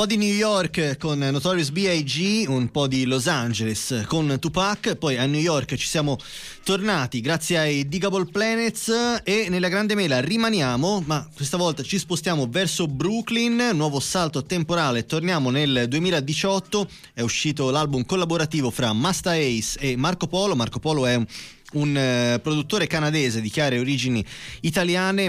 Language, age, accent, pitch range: Italian, 20-39, native, 135-185 Hz